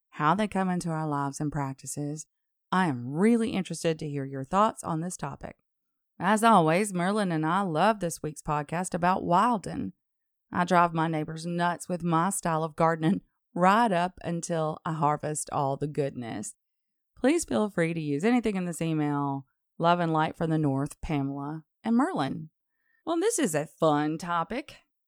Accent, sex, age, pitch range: American, female, 30-49, 155-215 Hz